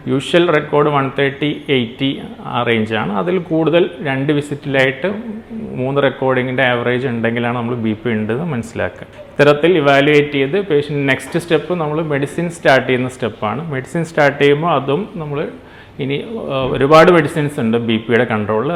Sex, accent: male, native